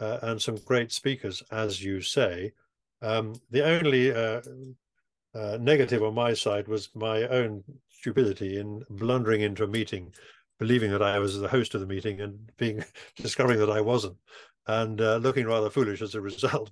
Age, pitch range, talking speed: 50-69, 105-125 Hz, 175 wpm